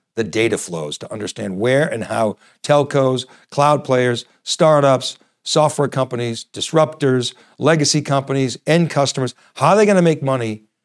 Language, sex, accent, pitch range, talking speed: English, male, American, 125-165 Hz, 140 wpm